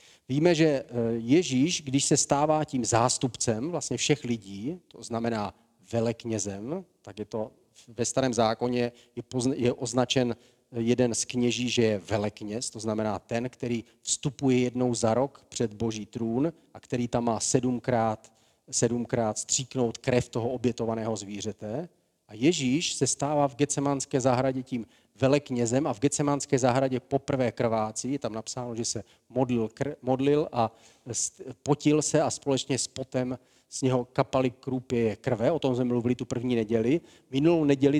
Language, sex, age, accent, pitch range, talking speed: Czech, male, 40-59, native, 115-135 Hz, 150 wpm